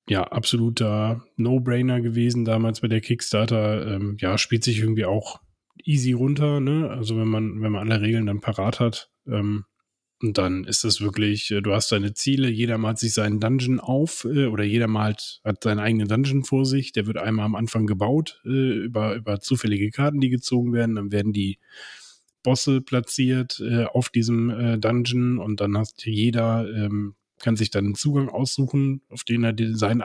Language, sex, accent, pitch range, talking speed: German, male, German, 105-125 Hz, 170 wpm